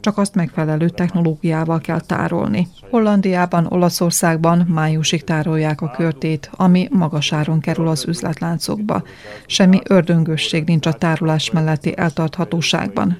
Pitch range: 165-180 Hz